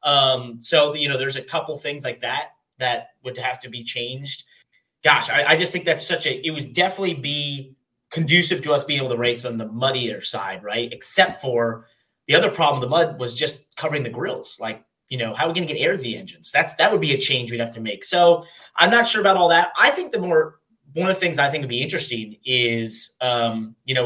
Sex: male